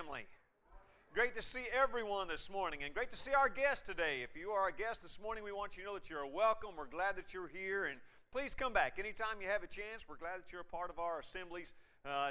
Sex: male